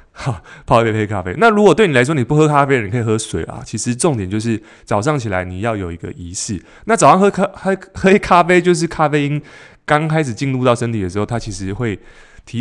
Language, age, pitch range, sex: Chinese, 20-39, 100-140 Hz, male